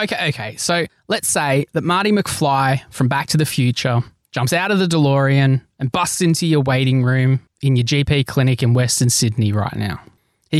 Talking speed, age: 195 wpm, 20-39